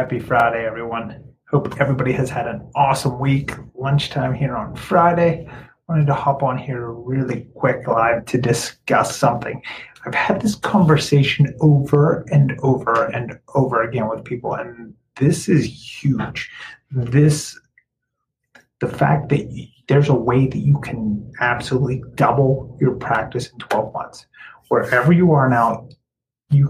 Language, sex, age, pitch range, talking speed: English, male, 30-49, 125-150 Hz, 140 wpm